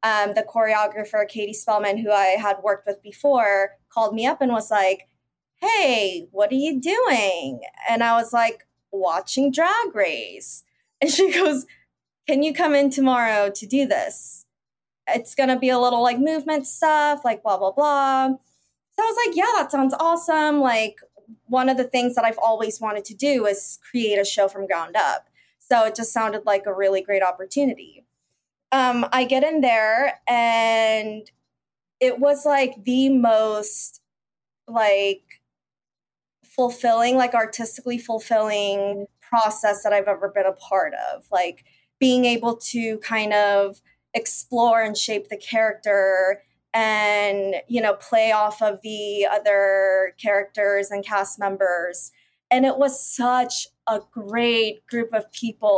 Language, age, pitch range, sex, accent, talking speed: English, 20-39, 205-255 Hz, female, American, 155 wpm